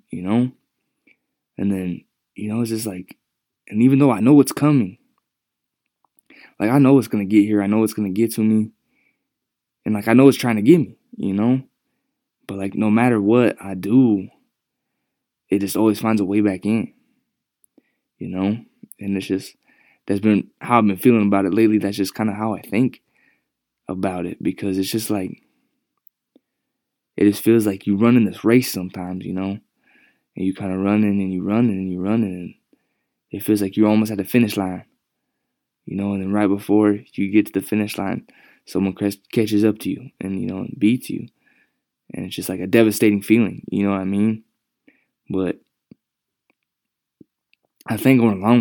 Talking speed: 195 wpm